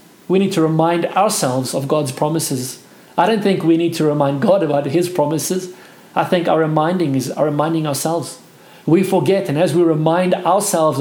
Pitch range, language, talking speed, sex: 155-185 Hz, English, 185 wpm, male